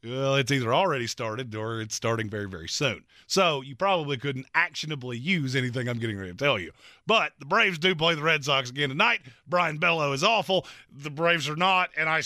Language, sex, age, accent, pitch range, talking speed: English, male, 30-49, American, 140-205 Hz, 215 wpm